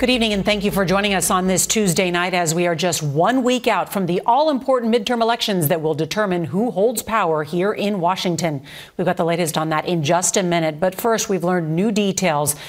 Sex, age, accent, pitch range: female, 40-59, American, 160-195 Hz